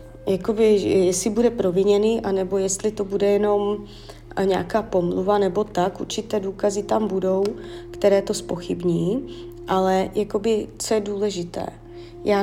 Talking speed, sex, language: 125 wpm, female, Czech